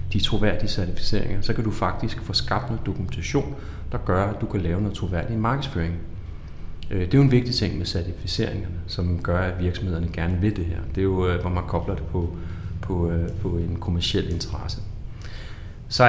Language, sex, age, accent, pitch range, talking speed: Danish, male, 30-49, native, 90-105 Hz, 185 wpm